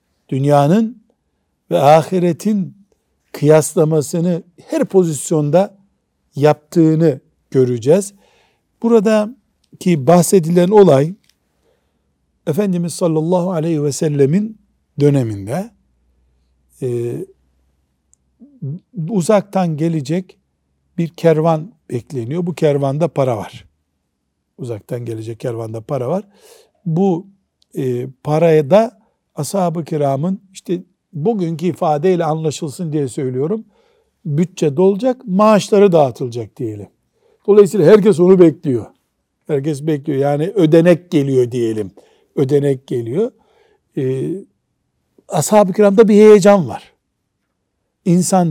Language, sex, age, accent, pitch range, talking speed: Turkish, male, 60-79, native, 140-200 Hz, 85 wpm